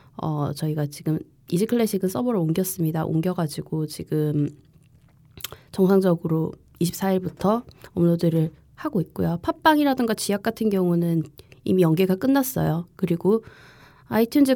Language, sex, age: Korean, female, 20-39